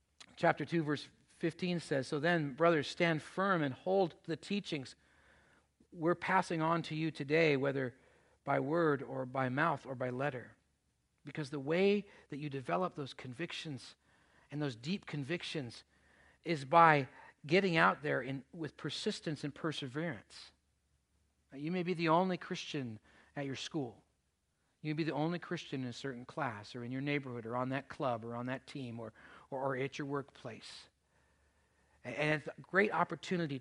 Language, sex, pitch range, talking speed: English, male, 120-160 Hz, 165 wpm